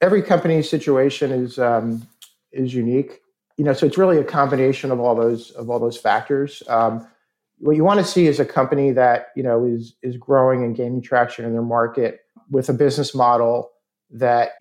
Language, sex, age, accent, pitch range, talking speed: English, male, 50-69, American, 120-140 Hz, 195 wpm